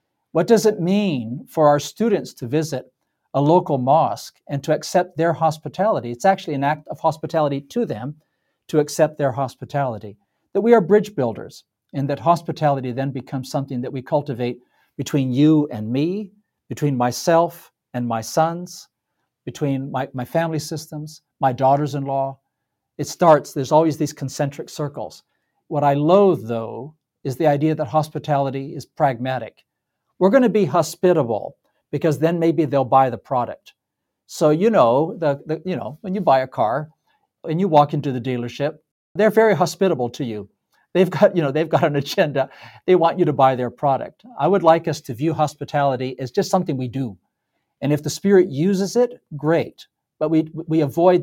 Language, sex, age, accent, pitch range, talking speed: English, male, 50-69, American, 135-165 Hz, 175 wpm